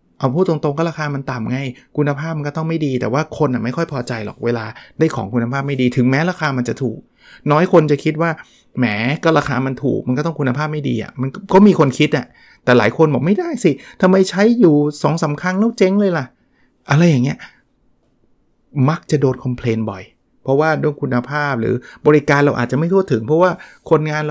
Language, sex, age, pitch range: Thai, male, 30-49, 130-165 Hz